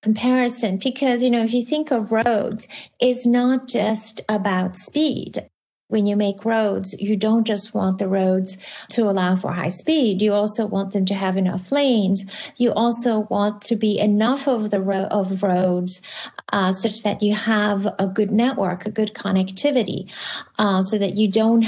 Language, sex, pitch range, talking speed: English, female, 195-230 Hz, 175 wpm